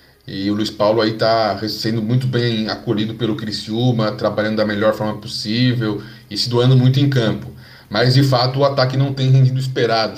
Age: 20-39